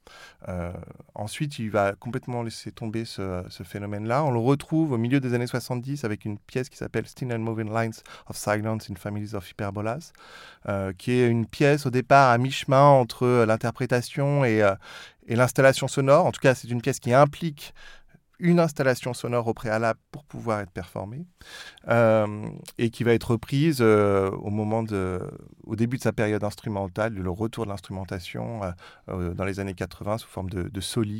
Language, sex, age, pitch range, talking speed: French, male, 30-49, 100-130 Hz, 180 wpm